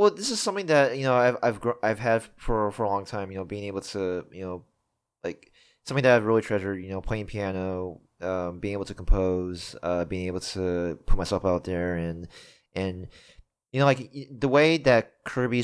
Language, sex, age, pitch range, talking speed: English, male, 20-39, 90-110 Hz, 215 wpm